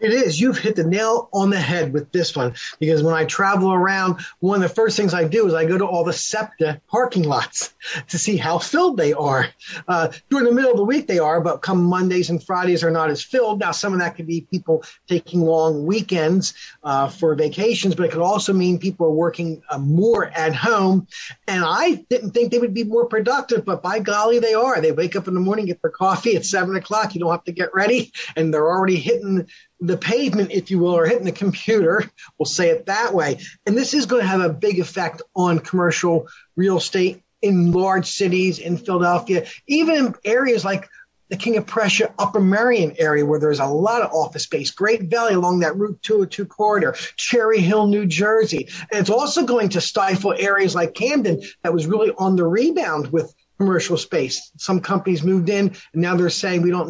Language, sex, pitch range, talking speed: English, male, 170-215 Hz, 220 wpm